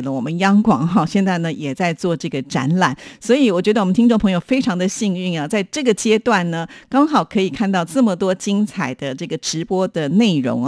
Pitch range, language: 165-220 Hz, Chinese